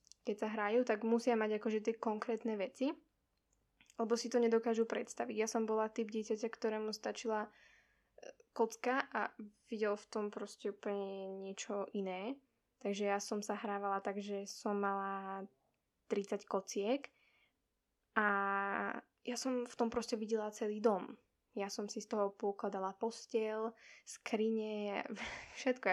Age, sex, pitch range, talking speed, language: 10-29, female, 205-235 Hz, 140 wpm, Slovak